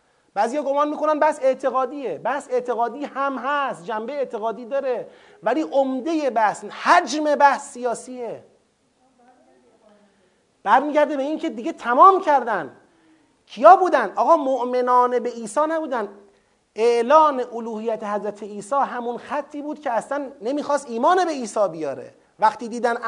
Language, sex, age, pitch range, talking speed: Persian, male, 30-49, 220-295 Hz, 130 wpm